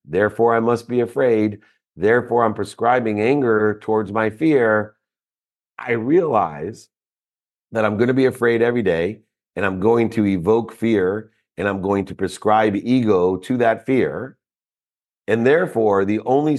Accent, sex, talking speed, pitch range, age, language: American, male, 145 wpm, 95-115 Hz, 50-69, English